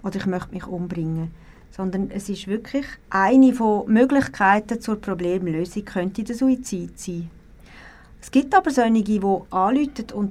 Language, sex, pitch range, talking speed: German, female, 190-235 Hz, 145 wpm